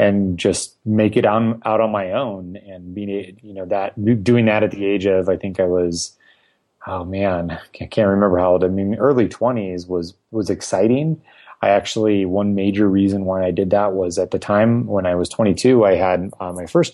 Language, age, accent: English, 30-49, American